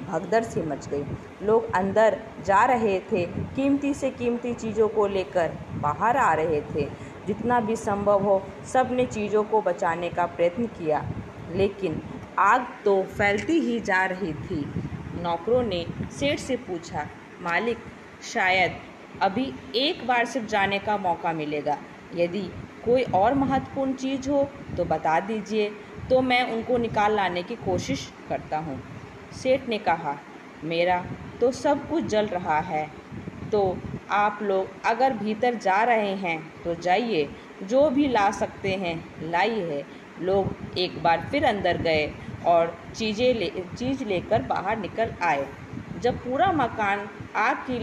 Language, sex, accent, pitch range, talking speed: Hindi, female, native, 175-245 Hz, 145 wpm